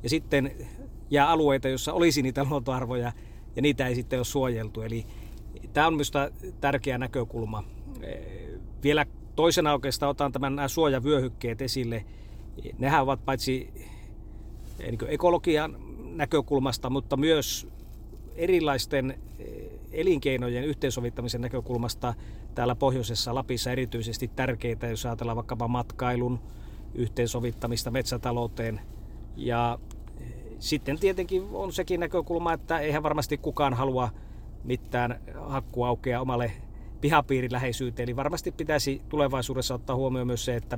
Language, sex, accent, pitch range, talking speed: Finnish, male, native, 115-140 Hz, 105 wpm